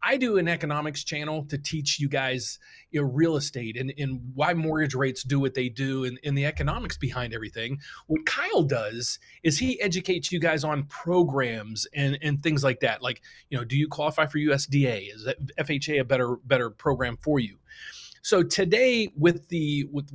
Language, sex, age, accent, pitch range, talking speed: English, male, 30-49, American, 135-165 Hz, 185 wpm